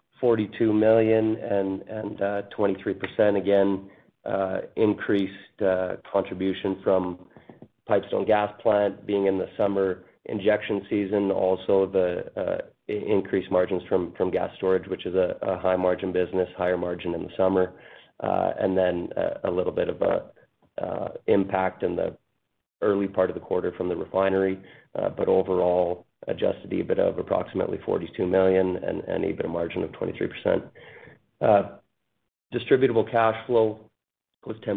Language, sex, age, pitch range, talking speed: English, male, 30-49, 95-100 Hz, 145 wpm